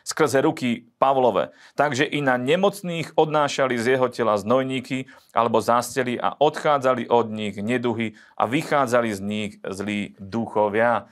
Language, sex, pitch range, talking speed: Slovak, male, 105-125 Hz, 135 wpm